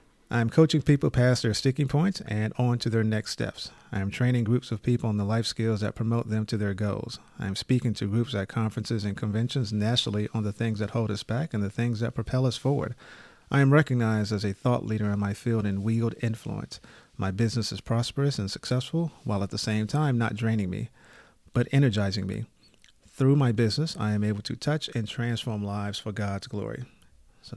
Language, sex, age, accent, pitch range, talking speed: English, male, 40-59, American, 105-125 Hz, 210 wpm